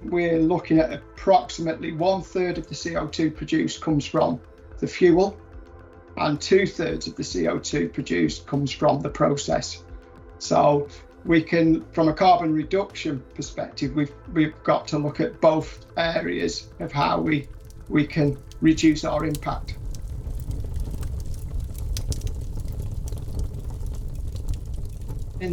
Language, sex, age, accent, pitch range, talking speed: English, male, 40-59, British, 120-170 Hz, 120 wpm